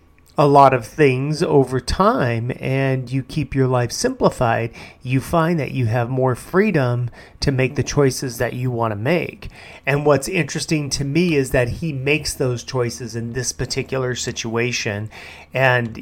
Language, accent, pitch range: English, American, 120-150 Hz